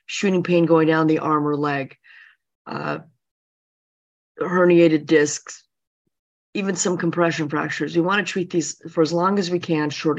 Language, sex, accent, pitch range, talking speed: English, female, American, 150-175 Hz, 155 wpm